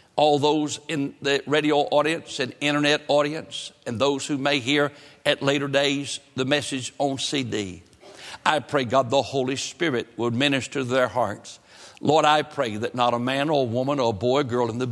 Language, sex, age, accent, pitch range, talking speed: English, male, 60-79, American, 120-140 Hz, 195 wpm